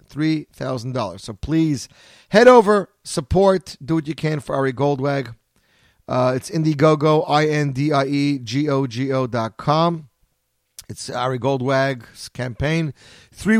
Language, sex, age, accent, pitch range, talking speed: English, male, 40-59, American, 120-160 Hz, 105 wpm